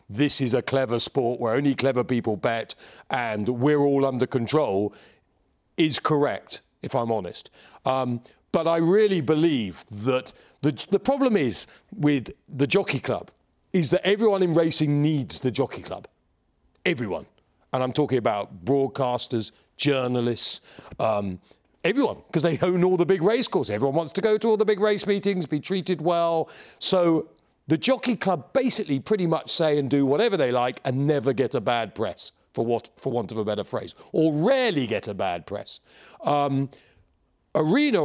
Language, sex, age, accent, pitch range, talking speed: English, male, 40-59, British, 130-195 Hz, 170 wpm